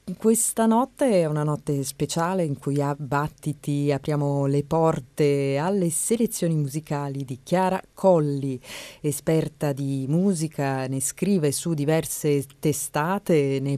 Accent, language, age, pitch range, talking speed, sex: native, Italian, 30-49, 140-175 Hz, 120 wpm, female